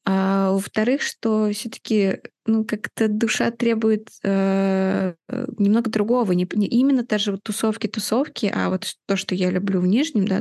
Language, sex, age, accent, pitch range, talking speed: Russian, female, 20-39, native, 185-220 Hz, 145 wpm